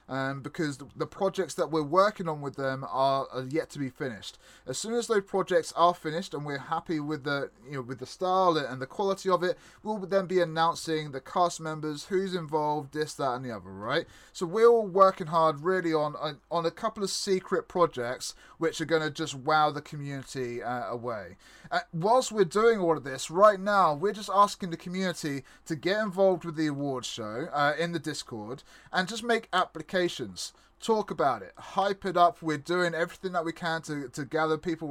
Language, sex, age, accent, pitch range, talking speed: English, male, 20-39, British, 150-185 Hz, 210 wpm